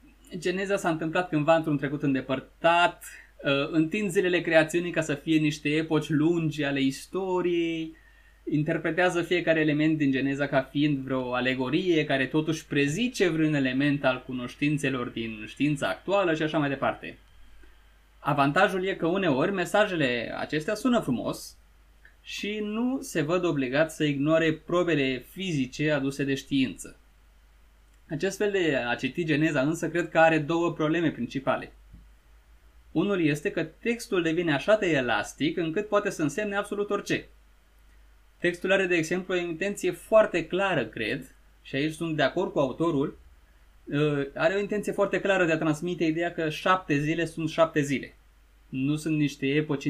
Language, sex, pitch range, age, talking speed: Romanian, male, 140-180 Hz, 20-39, 150 wpm